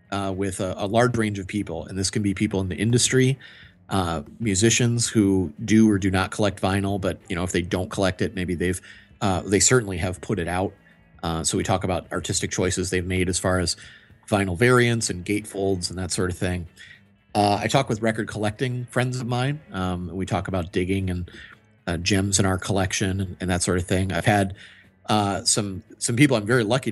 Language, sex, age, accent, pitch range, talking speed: English, male, 30-49, American, 95-110 Hz, 215 wpm